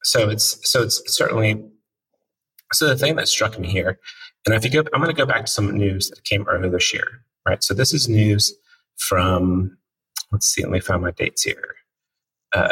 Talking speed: 210 wpm